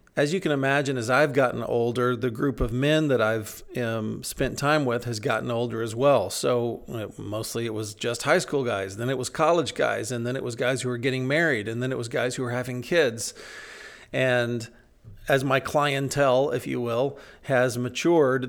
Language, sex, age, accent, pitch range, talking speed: English, male, 40-59, American, 120-150 Hz, 205 wpm